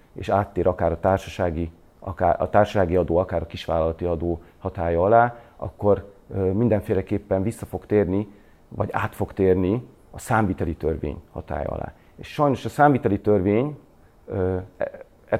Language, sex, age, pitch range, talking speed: Hungarian, male, 40-59, 90-115 Hz, 135 wpm